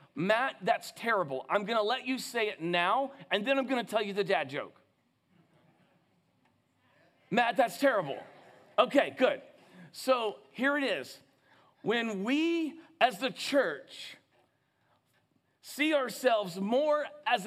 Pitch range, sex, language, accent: 195-260 Hz, male, English, American